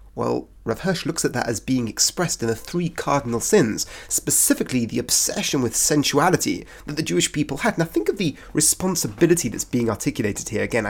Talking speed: 185 wpm